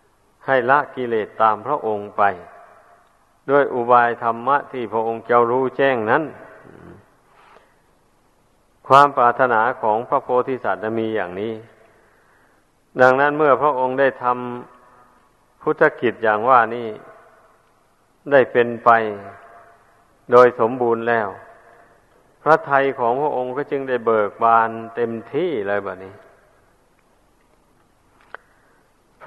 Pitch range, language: 110-130 Hz, Thai